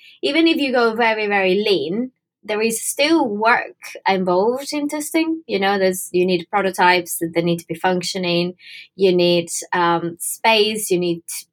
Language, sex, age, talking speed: English, female, 20-39, 165 wpm